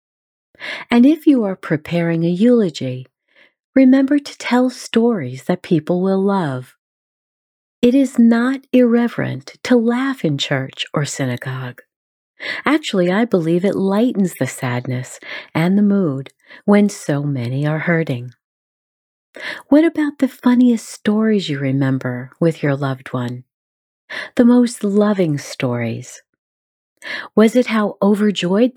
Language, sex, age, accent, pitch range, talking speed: English, female, 40-59, American, 135-230 Hz, 125 wpm